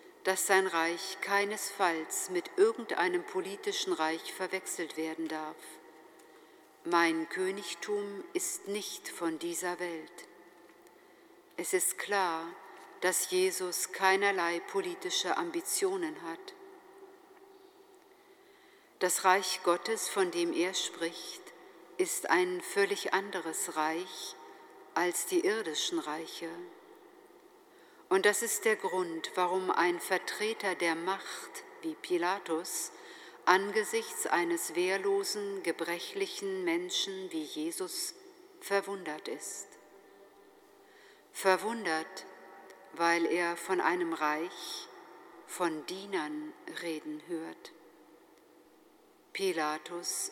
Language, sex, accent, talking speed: German, female, German, 90 wpm